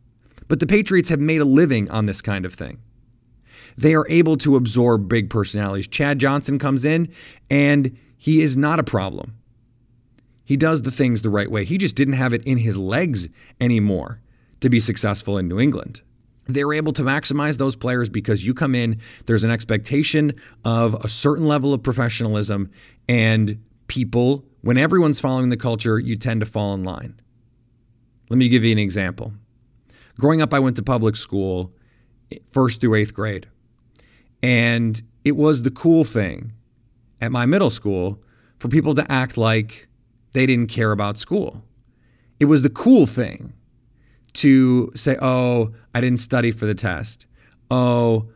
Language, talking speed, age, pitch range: English, 170 wpm, 30-49, 110-135 Hz